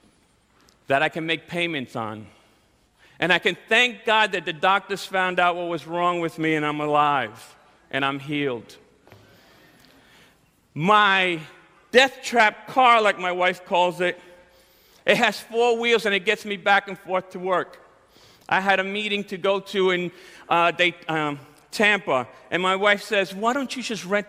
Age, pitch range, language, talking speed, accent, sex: 40-59, 175-220 Hz, English, 170 wpm, American, male